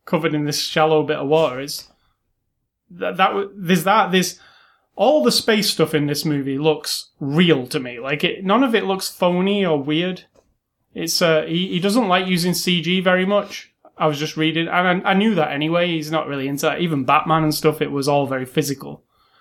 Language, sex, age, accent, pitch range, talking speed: English, male, 20-39, British, 150-185 Hz, 205 wpm